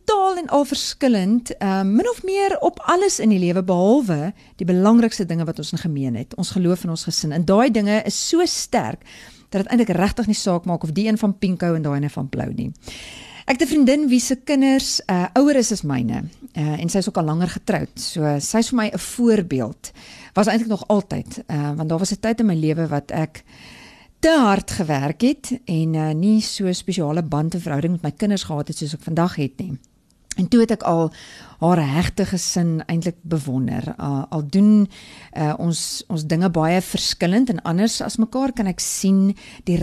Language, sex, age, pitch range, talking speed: English, female, 50-69, 160-225 Hz, 210 wpm